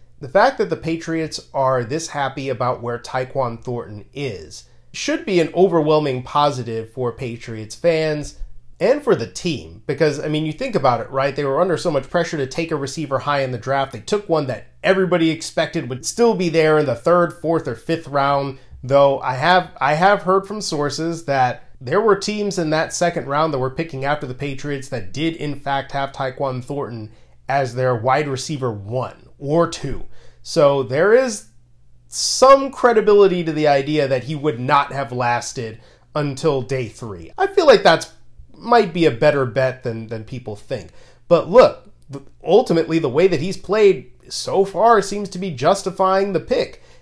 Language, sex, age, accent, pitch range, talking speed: English, male, 30-49, American, 130-165 Hz, 185 wpm